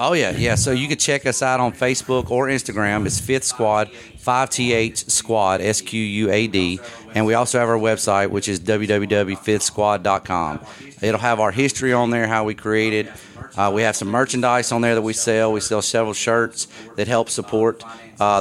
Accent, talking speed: American, 185 wpm